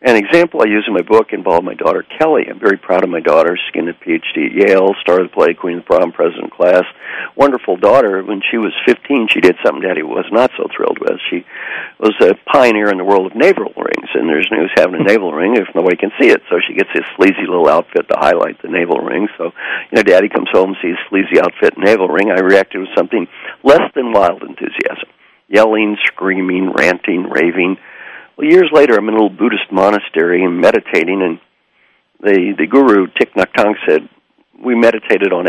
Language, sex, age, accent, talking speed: English, male, 60-79, American, 215 wpm